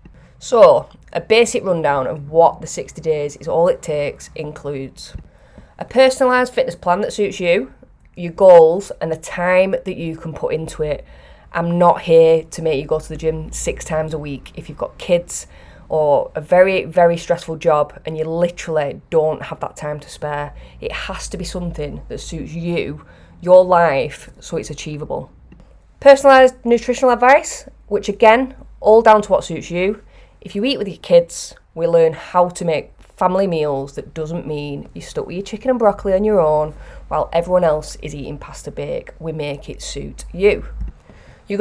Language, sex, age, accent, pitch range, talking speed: English, female, 20-39, British, 155-190 Hz, 185 wpm